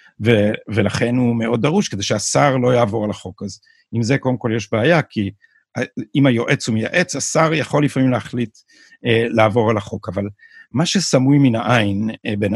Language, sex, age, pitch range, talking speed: Hebrew, male, 50-69, 115-155 Hz, 180 wpm